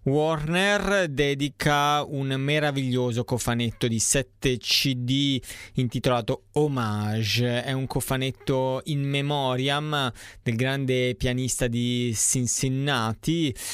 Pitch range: 115-135 Hz